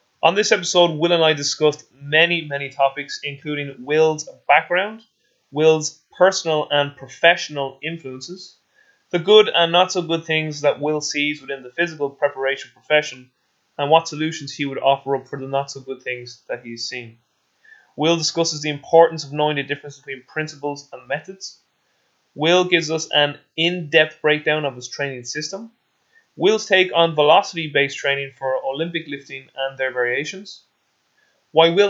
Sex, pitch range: male, 135-170 Hz